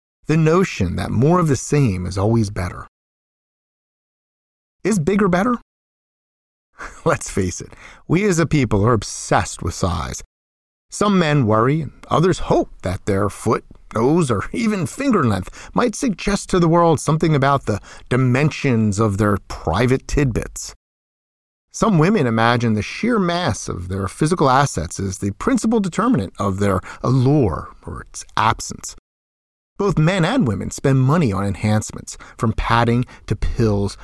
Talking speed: 145 wpm